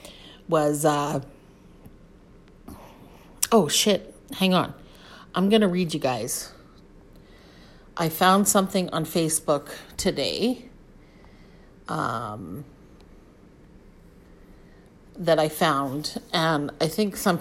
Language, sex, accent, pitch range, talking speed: English, female, American, 145-170 Hz, 90 wpm